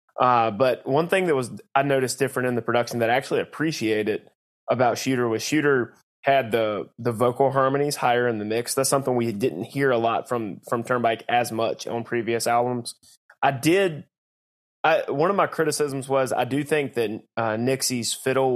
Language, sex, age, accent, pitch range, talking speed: English, male, 20-39, American, 115-135 Hz, 190 wpm